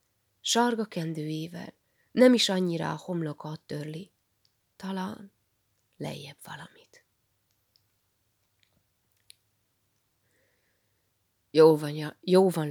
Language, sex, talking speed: Hungarian, female, 70 wpm